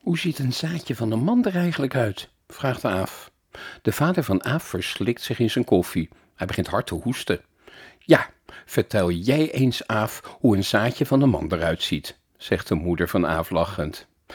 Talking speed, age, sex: 190 wpm, 50-69, male